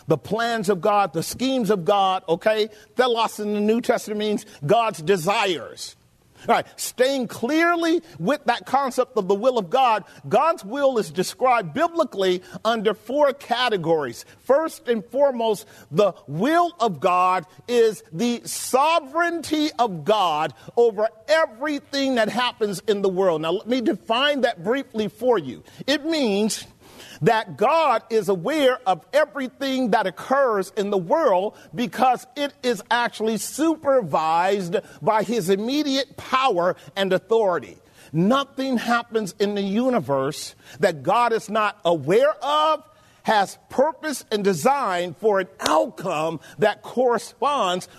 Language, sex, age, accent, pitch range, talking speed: English, male, 40-59, American, 190-255 Hz, 135 wpm